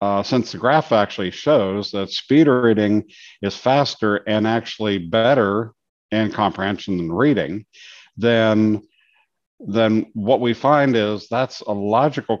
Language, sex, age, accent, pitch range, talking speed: English, male, 50-69, American, 95-115 Hz, 130 wpm